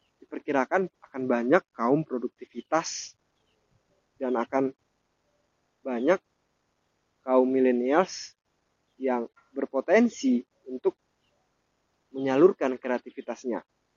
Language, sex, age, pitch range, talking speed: Indonesian, male, 20-39, 130-170 Hz, 65 wpm